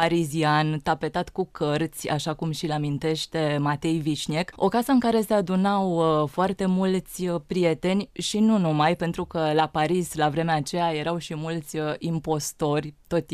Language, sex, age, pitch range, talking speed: Romanian, female, 20-39, 155-185 Hz, 155 wpm